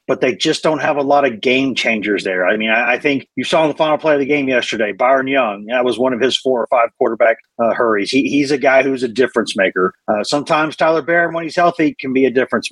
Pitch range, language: 130-170 Hz, English